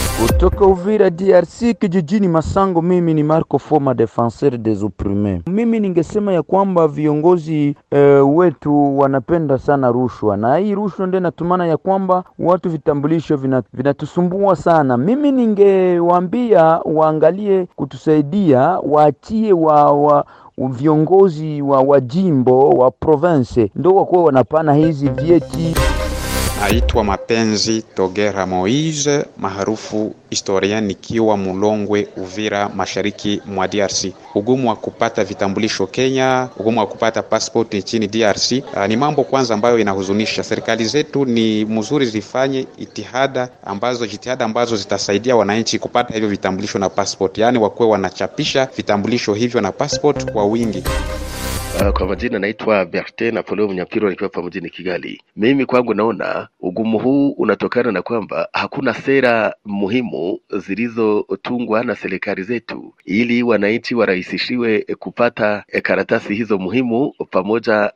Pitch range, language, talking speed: 105-155 Hz, Swahili, 120 wpm